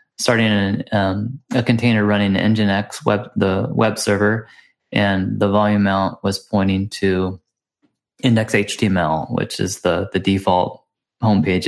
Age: 20-39